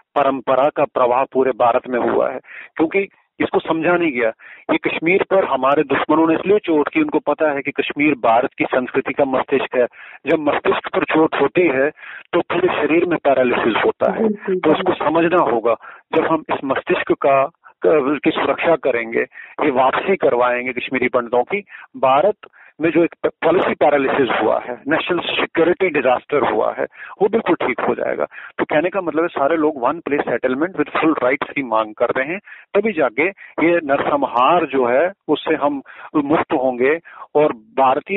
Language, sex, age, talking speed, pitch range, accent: Hindi, male, 40-59, 105 wpm, 130-170 Hz, native